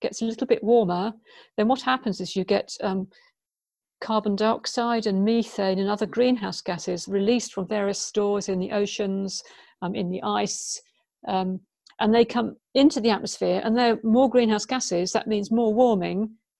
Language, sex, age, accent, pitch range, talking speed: English, female, 50-69, British, 195-235 Hz, 175 wpm